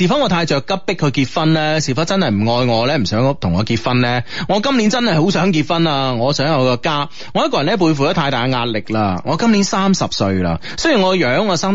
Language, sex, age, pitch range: Chinese, male, 30-49, 120-170 Hz